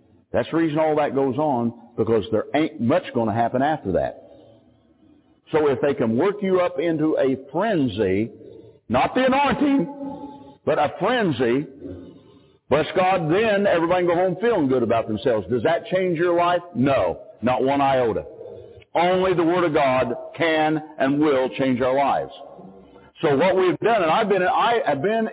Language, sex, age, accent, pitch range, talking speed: English, male, 60-79, American, 120-175 Hz, 170 wpm